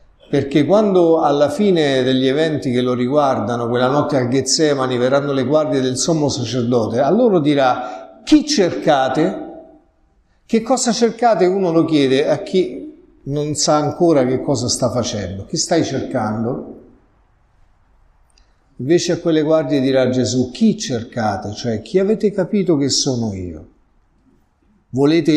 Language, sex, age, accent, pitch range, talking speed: Italian, male, 50-69, native, 125-170 Hz, 135 wpm